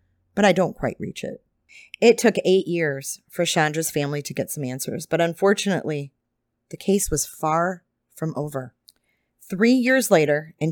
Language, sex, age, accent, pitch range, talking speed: English, female, 30-49, American, 145-205 Hz, 160 wpm